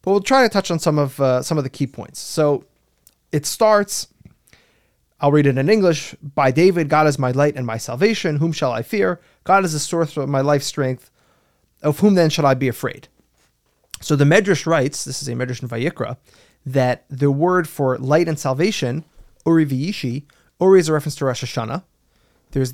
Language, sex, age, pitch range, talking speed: English, male, 30-49, 130-170 Hz, 205 wpm